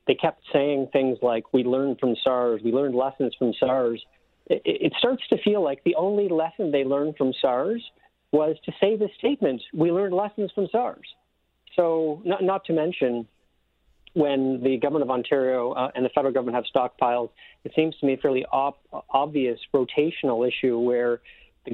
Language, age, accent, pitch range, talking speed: English, 40-59, American, 125-155 Hz, 180 wpm